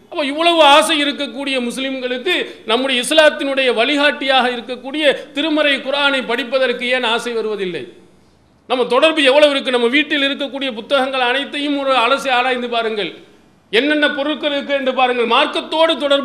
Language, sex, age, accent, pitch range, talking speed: English, male, 40-59, Indian, 245-285 Hz, 130 wpm